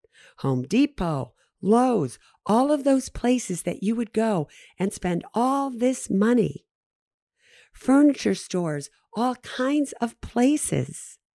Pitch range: 160-220 Hz